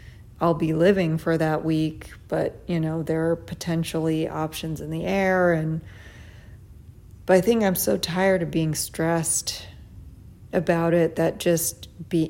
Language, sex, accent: English, female, American